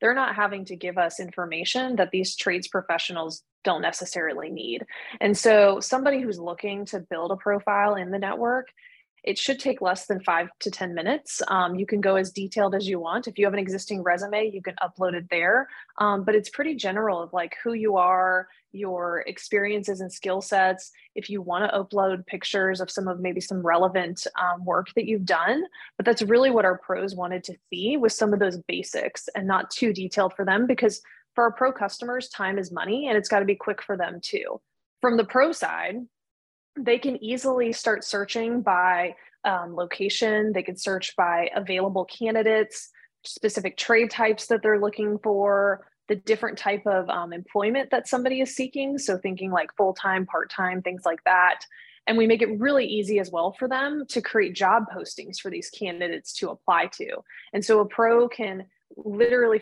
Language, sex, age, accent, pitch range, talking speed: English, female, 20-39, American, 185-225 Hz, 190 wpm